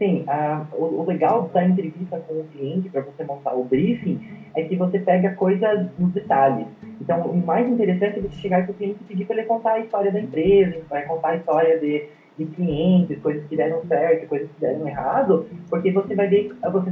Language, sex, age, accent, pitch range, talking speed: Portuguese, male, 20-39, Brazilian, 160-200 Hz, 215 wpm